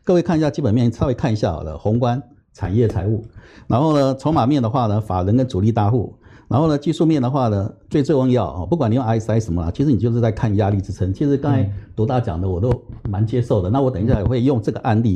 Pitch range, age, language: 100-140 Hz, 60-79, Chinese